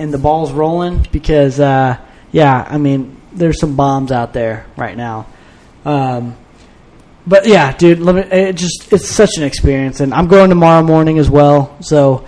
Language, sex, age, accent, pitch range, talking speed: English, male, 20-39, American, 135-160 Hz, 175 wpm